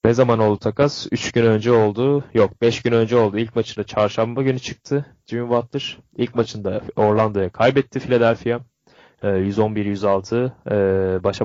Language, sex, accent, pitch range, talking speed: Turkish, male, native, 105-155 Hz, 140 wpm